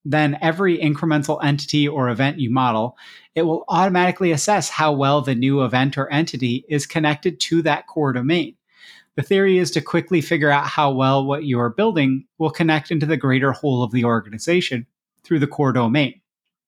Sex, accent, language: male, American, English